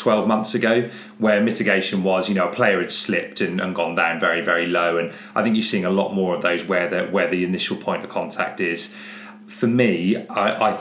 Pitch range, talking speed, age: 95-155 Hz, 235 wpm, 30-49